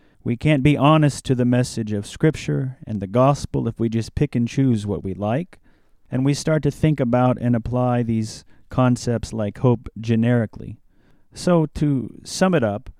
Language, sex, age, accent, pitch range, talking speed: English, male, 30-49, American, 105-130 Hz, 180 wpm